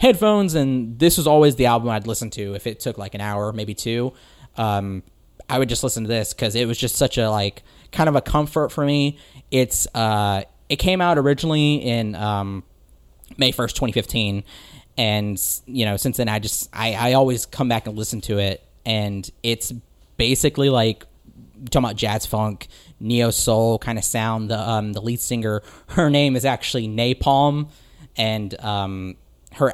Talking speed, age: 185 wpm, 20-39